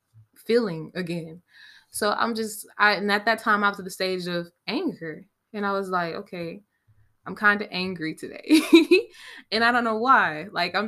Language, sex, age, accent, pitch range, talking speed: English, female, 20-39, American, 175-220 Hz, 190 wpm